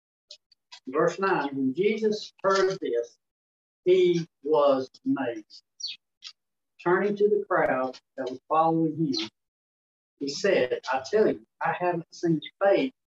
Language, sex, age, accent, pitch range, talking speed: English, male, 60-79, American, 130-180 Hz, 120 wpm